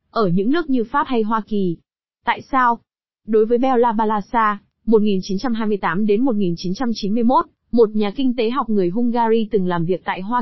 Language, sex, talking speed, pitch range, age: Vietnamese, female, 160 wpm, 200-255 Hz, 20-39